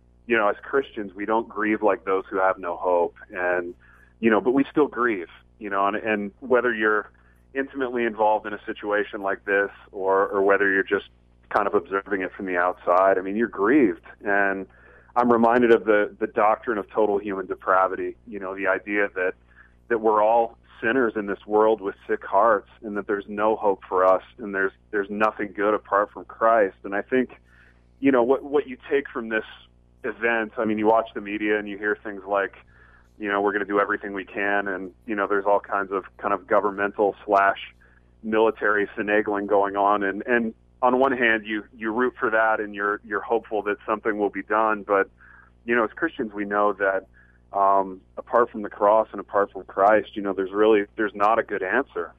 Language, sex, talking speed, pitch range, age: English, male, 210 wpm, 95-110 Hz, 30-49